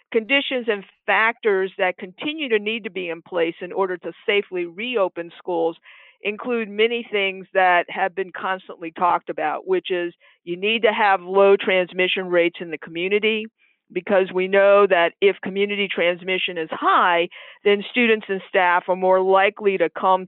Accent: American